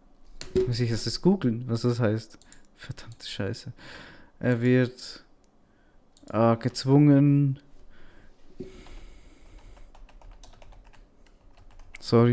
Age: 20-39